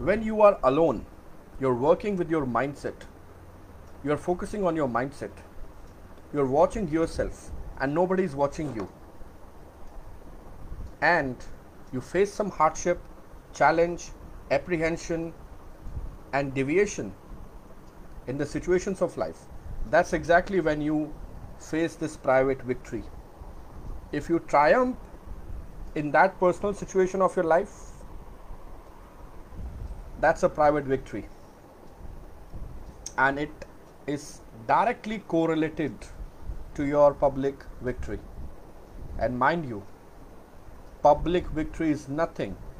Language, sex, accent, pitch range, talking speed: English, male, Indian, 100-170 Hz, 110 wpm